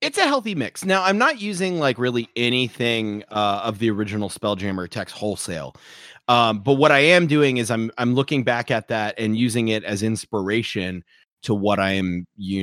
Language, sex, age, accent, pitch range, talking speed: English, male, 30-49, American, 100-125 Hz, 195 wpm